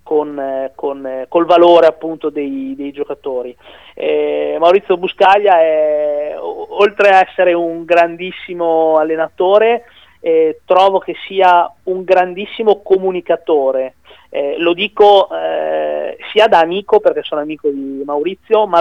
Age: 30-49